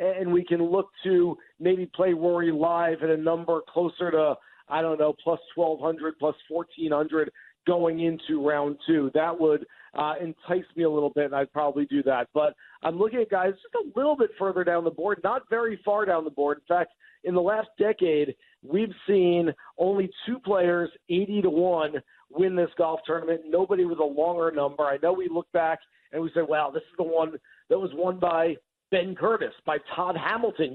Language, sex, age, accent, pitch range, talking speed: English, male, 50-69, American, 160-195 Hz, 195 wpm